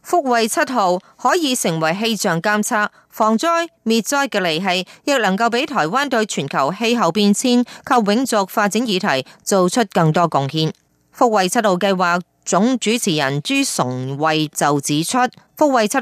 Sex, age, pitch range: female, 30-49, 175-245 Hz